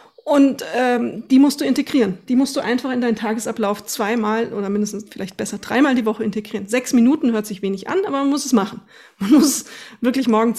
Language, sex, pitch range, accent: German, female, 215-265 Hz, German